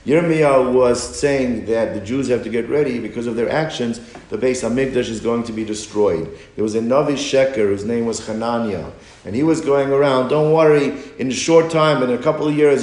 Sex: male